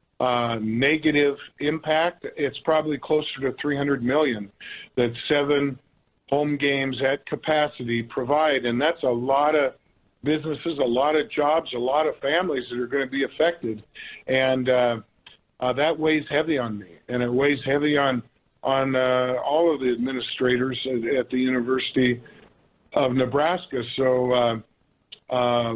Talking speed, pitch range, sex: 150 wpm, 125-150 Hz, male